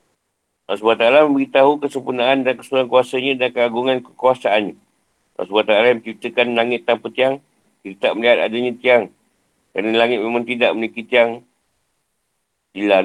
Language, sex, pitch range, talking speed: Malay, male, 115-125 Hz, 125 wpm